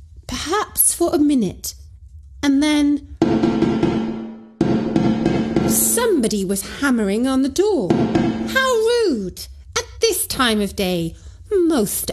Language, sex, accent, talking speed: English, female, British, 100 wpm